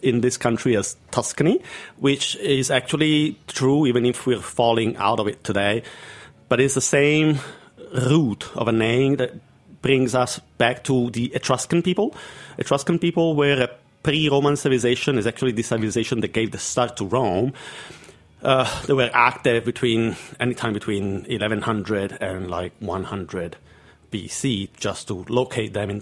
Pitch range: 110-135 Hz